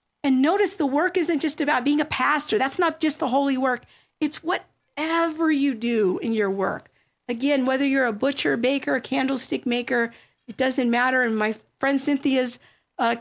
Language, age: English, 50-69